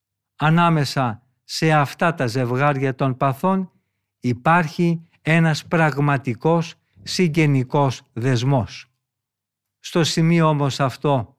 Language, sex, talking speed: Greek, male, 85 wpm